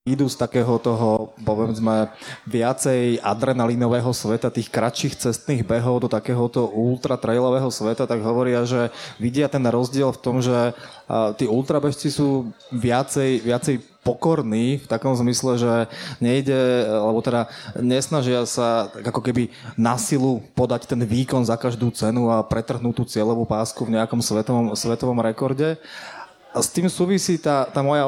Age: 20-39